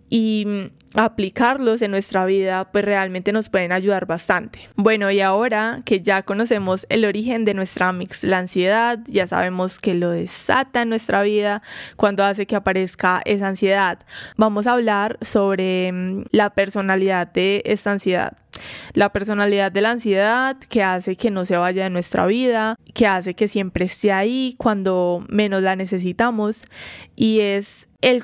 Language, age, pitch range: Spanish, 20-39, 195-225 Hz